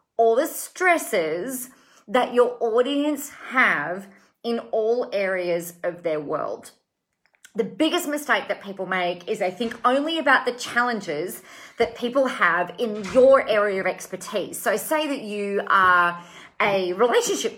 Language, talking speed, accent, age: English, 140 wpm, Australian, 40-59